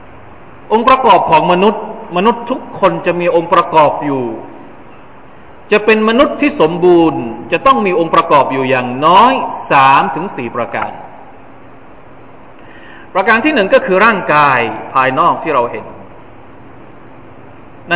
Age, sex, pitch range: 20-39, male, 140-190 Hz